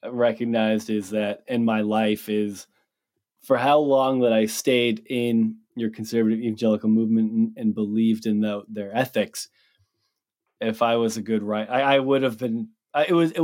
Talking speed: 165 wpm